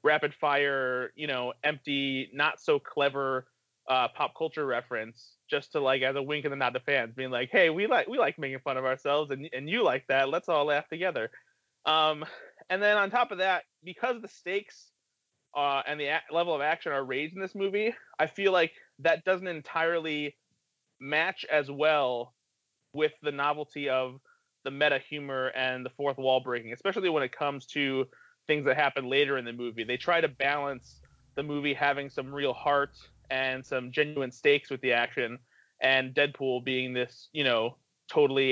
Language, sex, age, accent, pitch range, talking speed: English, male, 30-49, American, 130-150 Hz, 180 wpm